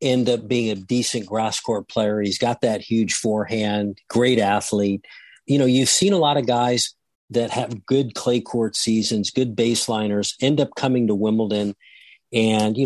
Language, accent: English, American